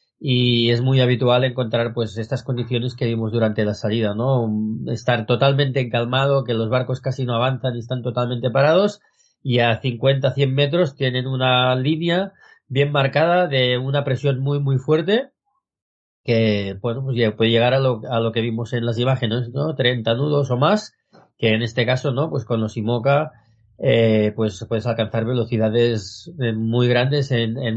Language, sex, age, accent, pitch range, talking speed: Spanish, male, 30-49, Spanish, 115-135 Hz, 175 wpm